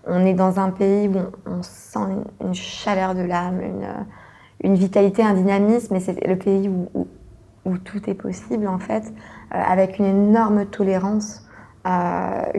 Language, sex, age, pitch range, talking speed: French, female, 20-39, 180-210 Hz, 165 wpm